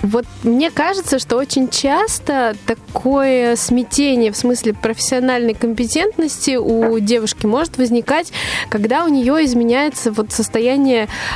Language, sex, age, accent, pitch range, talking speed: Russian, female, 20-39, native, 230-275 Hz, 110 wpm